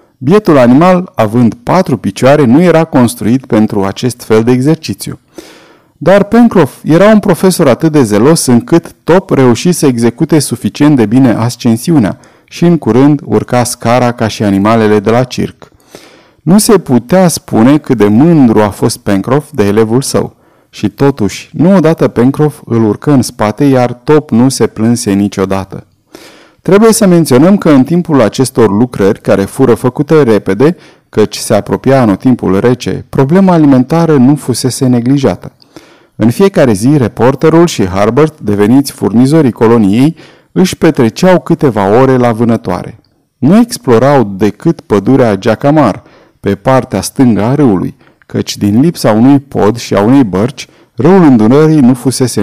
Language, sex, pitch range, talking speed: Romanian, male, 110-155 Hz, 150 wpm